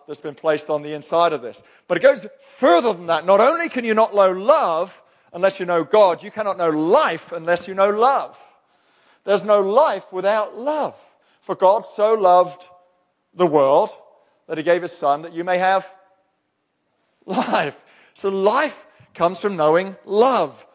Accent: British